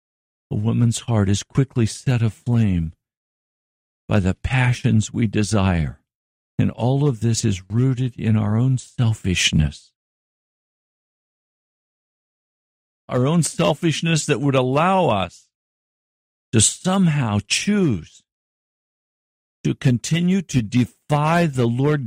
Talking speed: 105 wpm